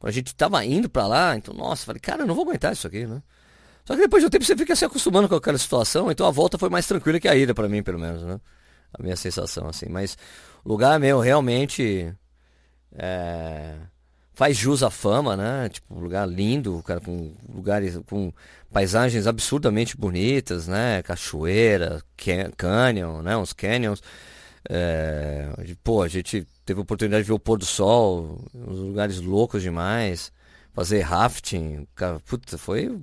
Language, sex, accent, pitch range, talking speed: Portuguese, male, Brazilian, 85-115 Hz, 180 wpm